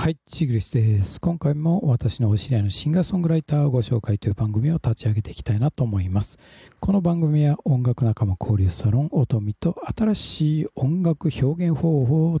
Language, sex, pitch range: Japanese, male, 110-160 Hz